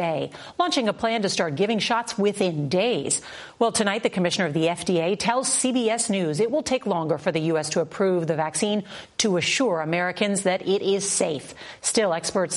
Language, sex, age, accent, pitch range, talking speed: English, female, 40-59, American, 170-215 Hz, 185 wpm